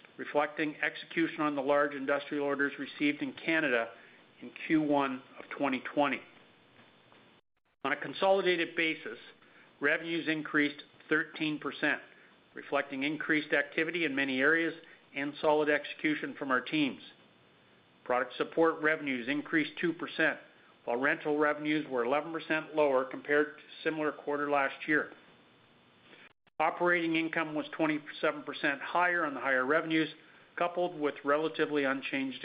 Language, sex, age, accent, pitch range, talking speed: English, male, 50-69, American, 145-160 Hz, 115 wpm